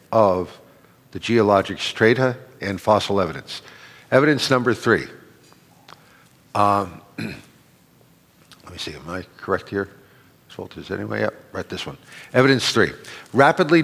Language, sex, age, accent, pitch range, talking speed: English, male, 50-69, American, 120-155 Hz, 125 wpm